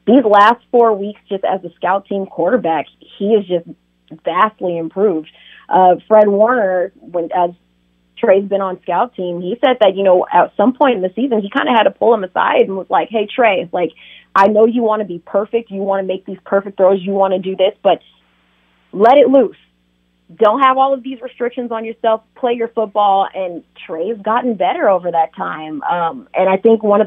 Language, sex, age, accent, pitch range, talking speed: English, female, 30-49, American, 180-220 Hz, 215 wpm